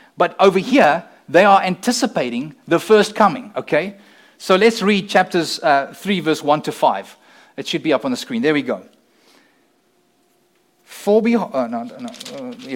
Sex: male